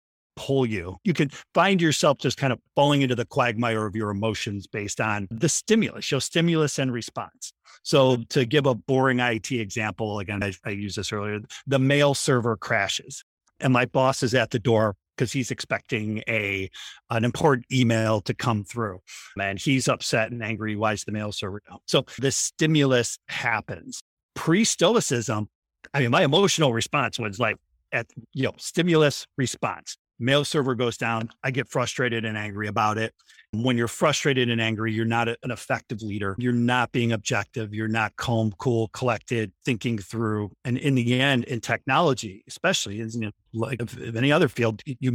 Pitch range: 110-135 Hz